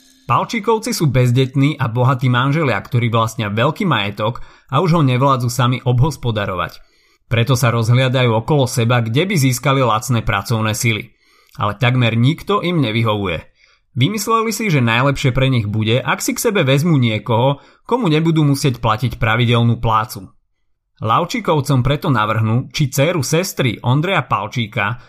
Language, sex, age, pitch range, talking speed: Slovak, male, 30-49, 115-145 Hz, 140 wpm